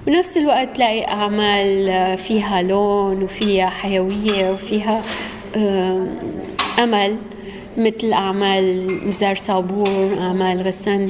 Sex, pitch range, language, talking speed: female, 190-215 Hz, Arabic, 85 wpm